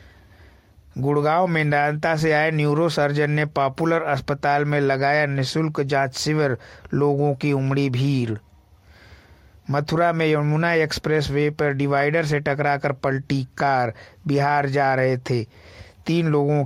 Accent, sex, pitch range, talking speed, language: native, male, 120-145 Hz, 125 wpm, Hindi